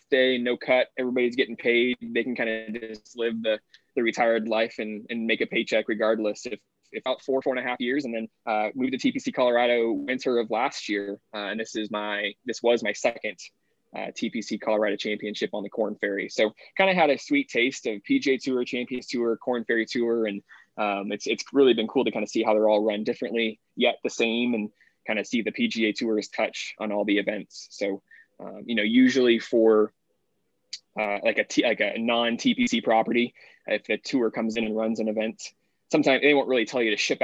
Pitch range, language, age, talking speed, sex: 105-125 Hz, English, 20-39, 220 wpm, male